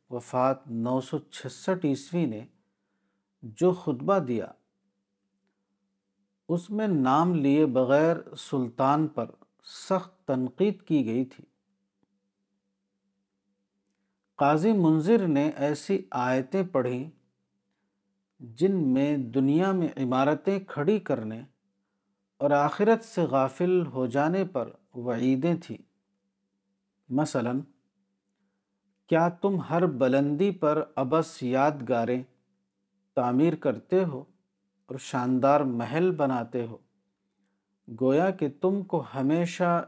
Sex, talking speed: male, 95 wpm